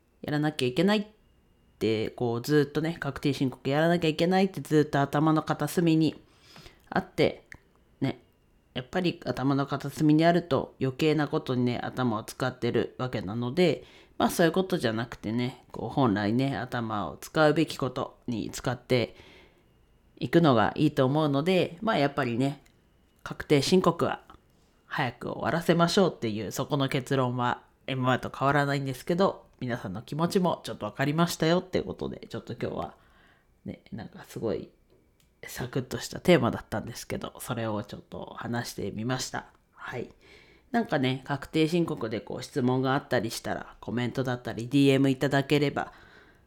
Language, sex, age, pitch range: Japanese, female, 40-59, 120-155 Hz